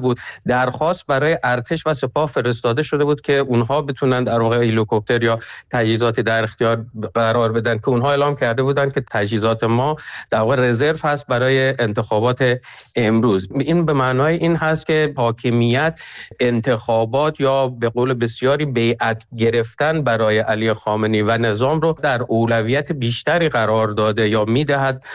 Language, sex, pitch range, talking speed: Persian, male, 110-135 Hz, 145 wpm